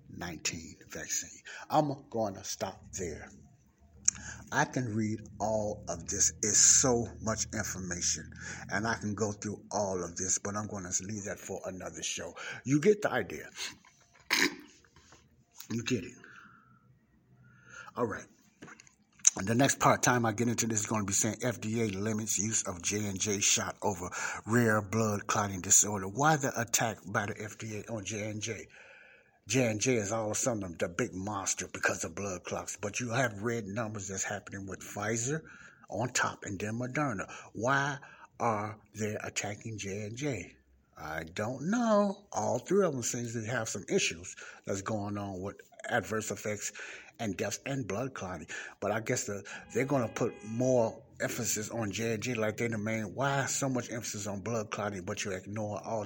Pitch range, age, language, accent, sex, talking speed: 100-115 Hz, 60-79, English, American, male, 170 wpm